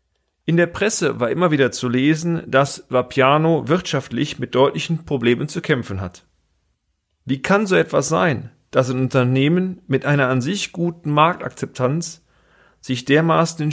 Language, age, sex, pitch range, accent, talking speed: German, 40-59, male, 125-160 Hz, German, 150 wpm